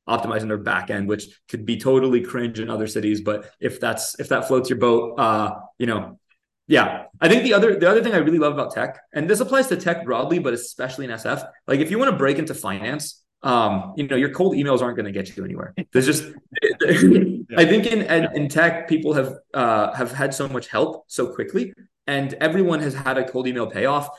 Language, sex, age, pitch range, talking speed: English, male, 20-39, 120-170 Hz, 230 wpm